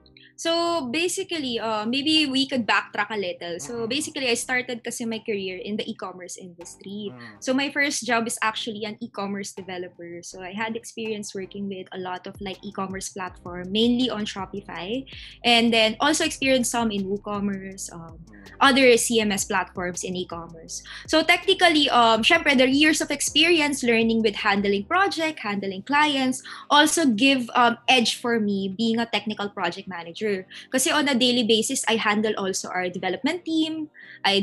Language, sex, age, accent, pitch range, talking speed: Filipino, female, 20-39, native, 200-275 Hz, 165 wpm